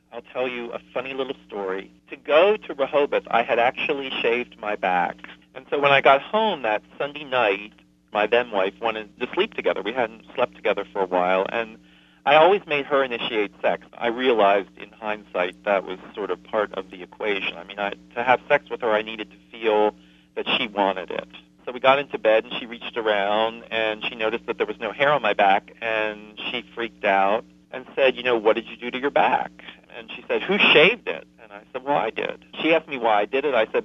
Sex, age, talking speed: male, 40-59, 230 wpm